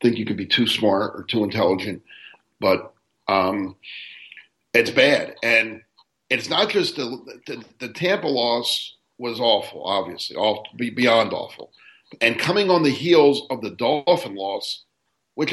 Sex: male